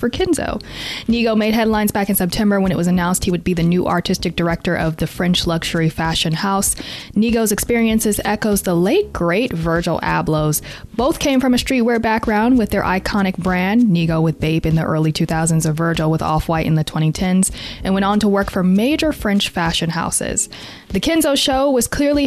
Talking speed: 195 wpm